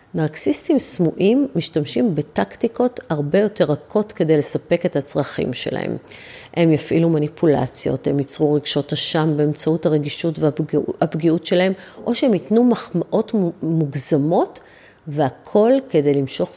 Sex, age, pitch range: female, 40-59, 155-215 Hz